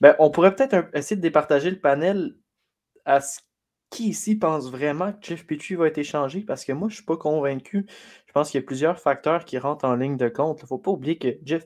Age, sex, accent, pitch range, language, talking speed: 20-39, male, Canadian, 120-150 Hz, French, 250 wpm